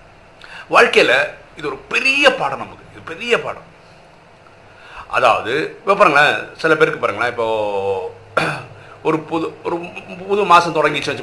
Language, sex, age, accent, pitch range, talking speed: Tamil, male, 50-69, native, 150-225 Hz, 125 wpm